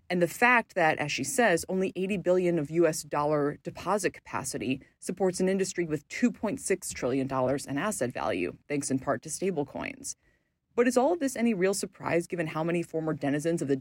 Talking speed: 195 wpm